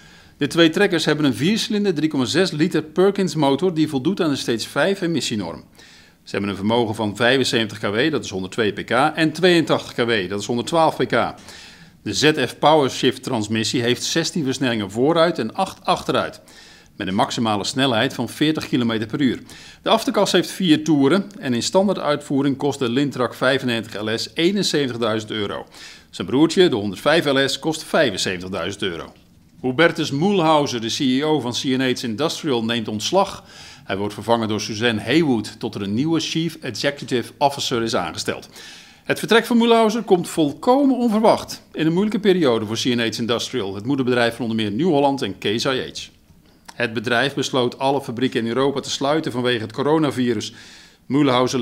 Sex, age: male, 50-69